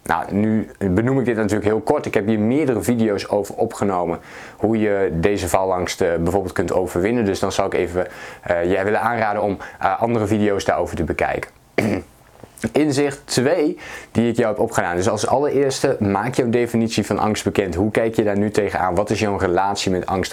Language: Dutch